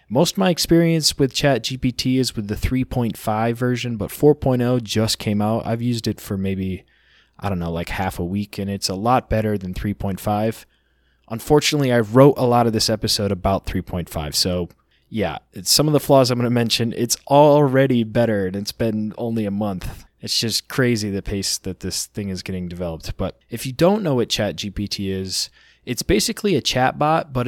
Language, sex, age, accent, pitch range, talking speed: English, male, 20-39, American, 100-130 Hz, 190 wpm